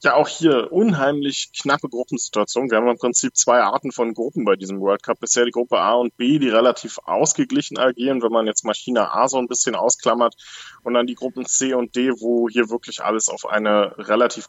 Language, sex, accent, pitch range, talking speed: German, male, German, 110-130 Hz, 210 wpm